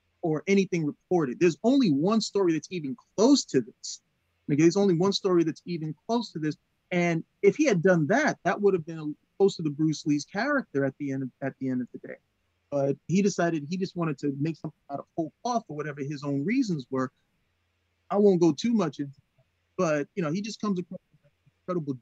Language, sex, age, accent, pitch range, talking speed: English, male, 30-49, American, 145-185 Hz, 230 wpm